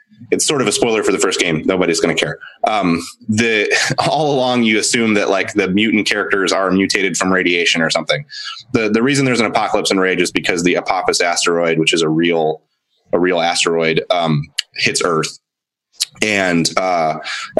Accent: American